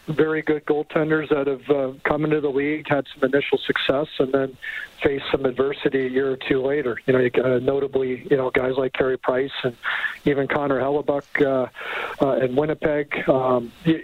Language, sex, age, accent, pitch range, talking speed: English, male, 50-69, American, 130-150 Hz, 190 wpm